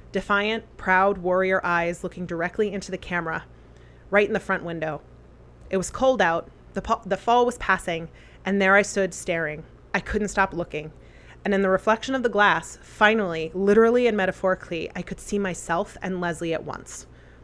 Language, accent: English, American